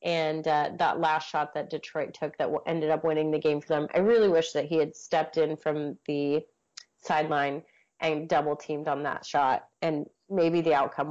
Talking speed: 200 wpm